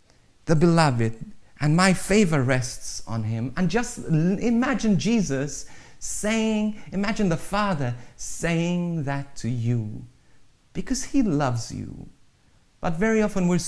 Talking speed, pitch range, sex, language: 125 wpm, 120-195 Hz, male, English